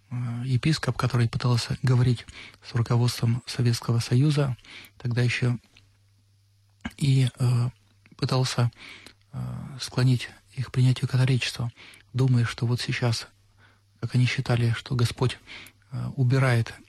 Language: Russian